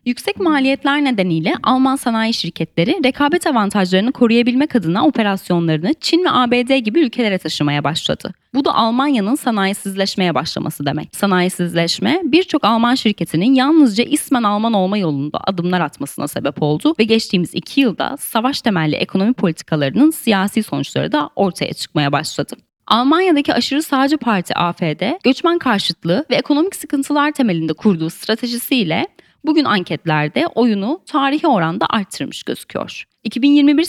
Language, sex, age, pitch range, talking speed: Turkish, female, 10-29, 175-280 Hz, 125 wpm